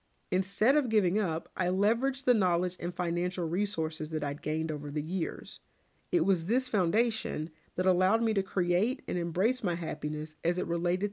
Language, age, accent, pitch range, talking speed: English, 40-59, American, 165-210 Hz, 180 wpm